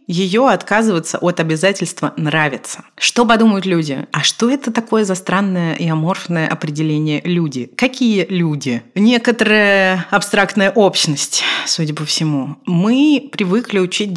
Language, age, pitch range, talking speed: Russian, 30-49, 150-205 Hz, 125 wpm